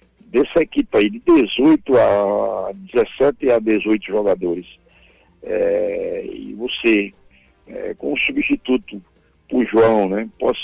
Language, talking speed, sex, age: Portuguese, 120 wpm, male, 60-79